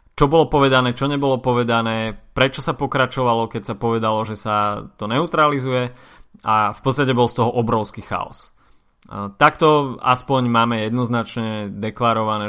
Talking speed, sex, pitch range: 140 wpm, male, 110-130 Hz